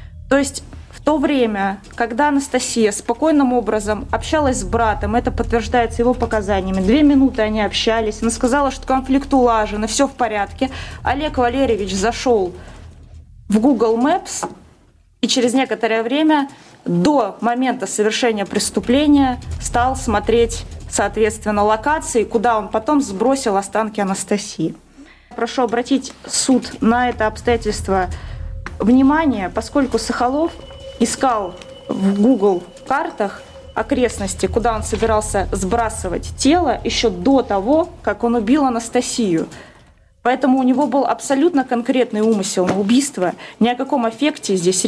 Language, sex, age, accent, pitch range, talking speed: Russian, female, 20-39, native, 210-260 Hz, 125 wpm